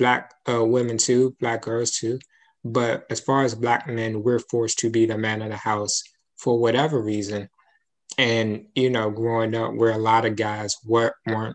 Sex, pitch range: male, 110-125 Hz